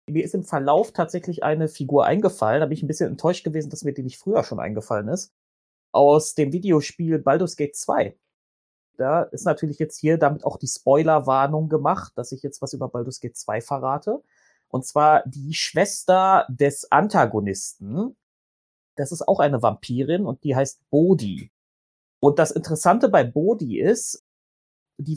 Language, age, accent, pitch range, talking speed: German, 30-49, German, 120-155 Hz, 165 wpm